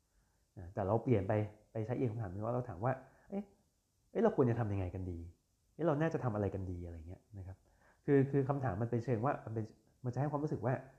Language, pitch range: Thai, 100-130 Hz